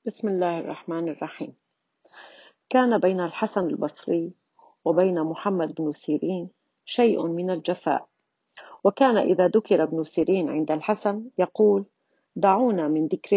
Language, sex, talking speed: Arabic, female, 115 wpm